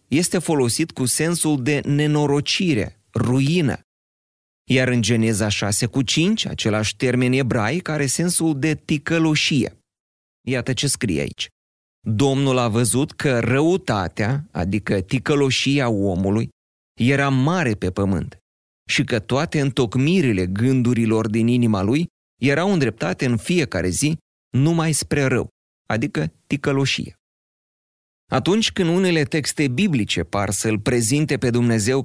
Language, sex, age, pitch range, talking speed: Romanian, male, 30-49, 105-145 Hz, 120 wpm